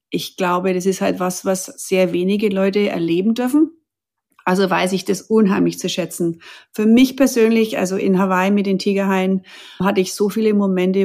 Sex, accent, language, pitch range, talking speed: female, German, German, 185-220 Hz, 180 wpm